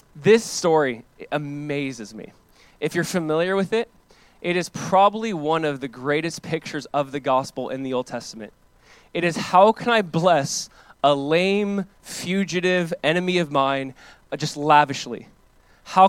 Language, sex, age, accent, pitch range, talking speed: English, male, 20-39, American, 150-195 Hz, 150 wpm